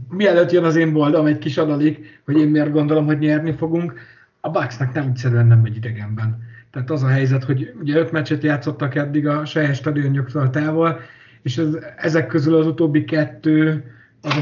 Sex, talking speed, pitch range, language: male, 185 wpm, 130-155 Hz, Hungarian